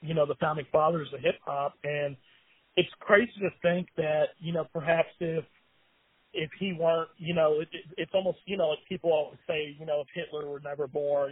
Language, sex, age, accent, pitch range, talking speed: English, male, 30-49, American, 145-170 Hz, 200 wpm